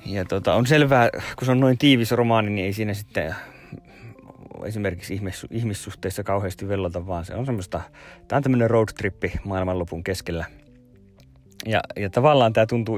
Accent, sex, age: native, male, 30-49